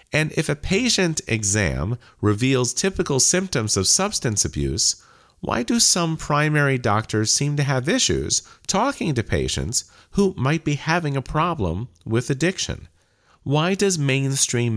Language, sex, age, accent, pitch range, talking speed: English, male, 40-59, American, 90-140 Hz, 140 wpm